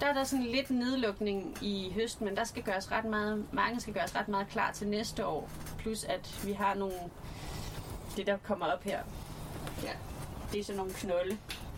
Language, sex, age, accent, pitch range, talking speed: Danish, female, 30-49, native, 185-220 Hz, 200 wpm